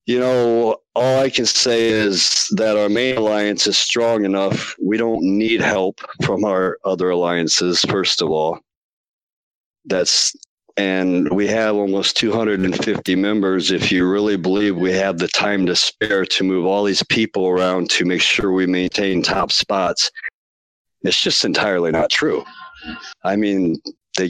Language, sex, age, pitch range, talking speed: English, male, 50-69, 95-115 Hz, 155 wpm